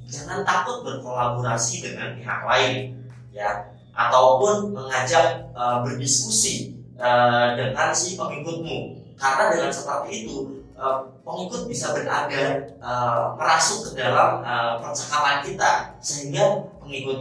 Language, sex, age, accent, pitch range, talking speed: Indonesian, male, 20-39, native, 120-145 Hz, 110 wpm